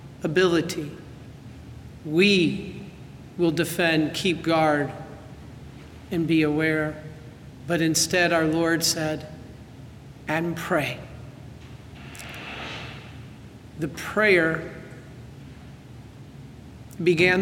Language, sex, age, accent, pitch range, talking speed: English, male, 50-69, American, 140-175 Hz, 65 wpm